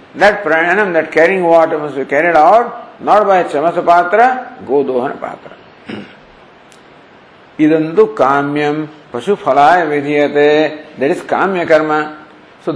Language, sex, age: English, male, 50-69